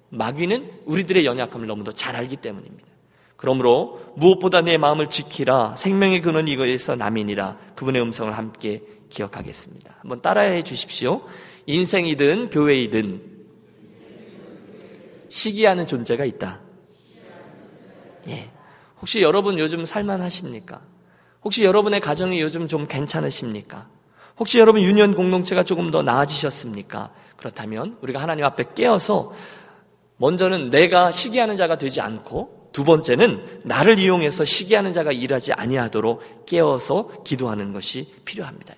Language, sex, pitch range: Korean, male, 125-205 Hz